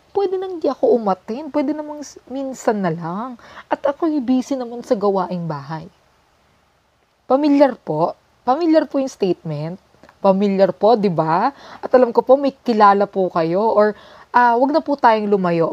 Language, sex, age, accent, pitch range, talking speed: Filipino, female, 20-39, native, 180-265 Hz, 165 wpm